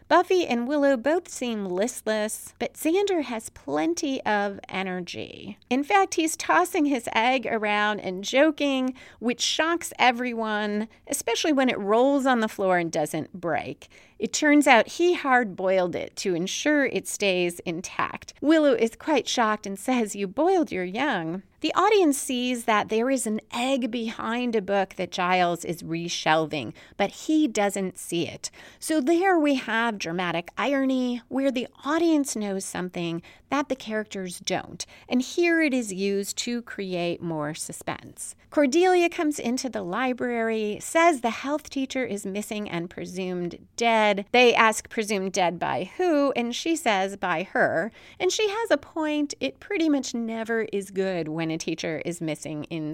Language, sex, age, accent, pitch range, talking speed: English, female, 30-49, American, 195-290 Hz, 160 wpm